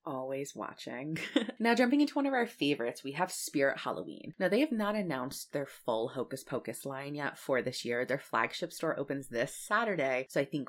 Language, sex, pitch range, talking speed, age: English, female, 130-180 Hz, 200 wpm, 20-39